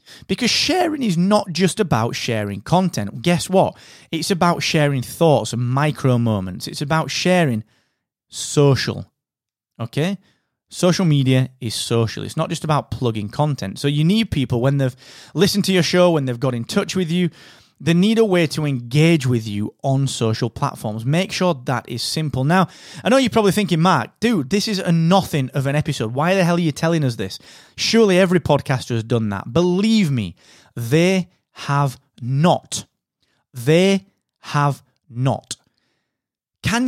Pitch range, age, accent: 125-180 Hz, 30-49, British